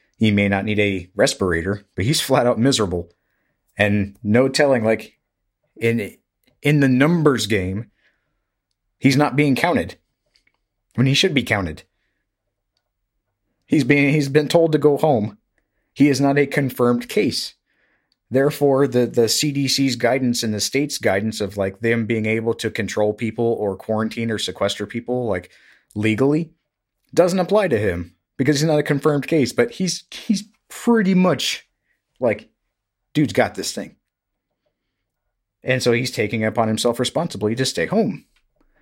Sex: male